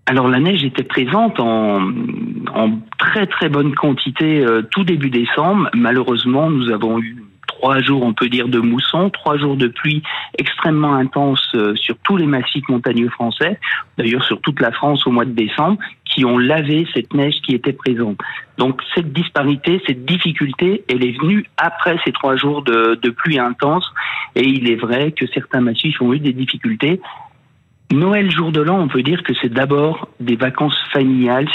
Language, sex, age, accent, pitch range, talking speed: French, male, 40-59, French, 125-155 Hz, 185 wpm